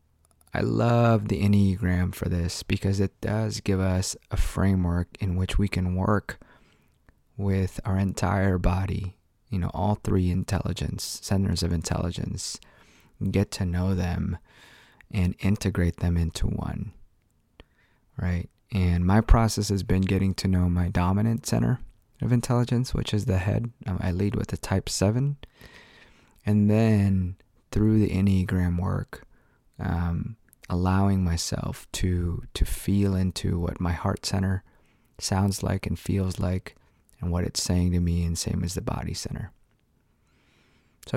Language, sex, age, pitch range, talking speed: English, male, 20-39, 90-105 Hz, 145 wpm